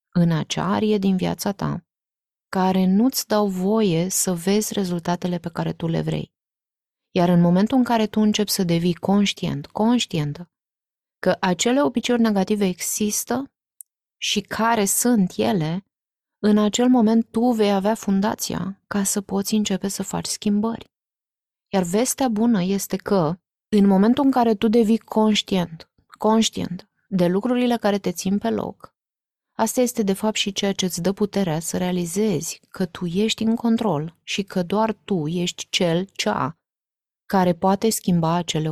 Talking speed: 155 wpm